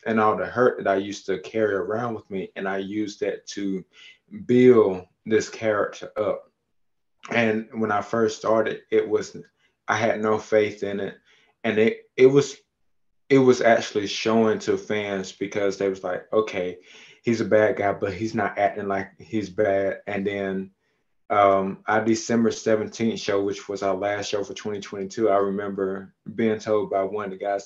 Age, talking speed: 20-39, 180 wpm